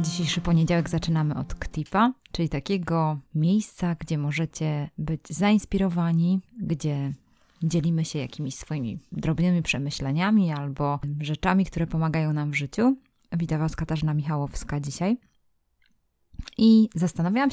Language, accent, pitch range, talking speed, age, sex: Polish, native, 160-195 Hz, 115 wpm, 20-39, female